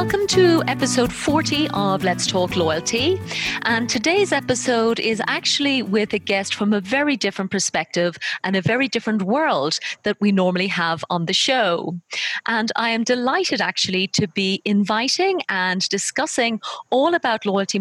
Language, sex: English, female